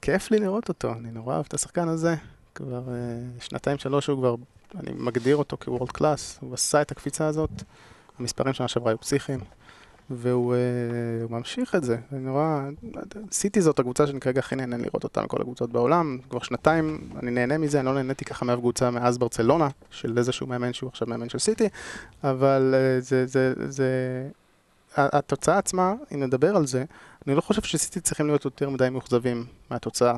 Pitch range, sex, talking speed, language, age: 125-145 Hz, male, 185 wpm, Hebrew, 20-39